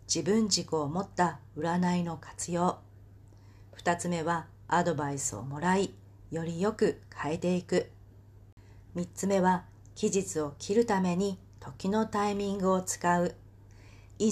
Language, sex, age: Japanese, female, 40-59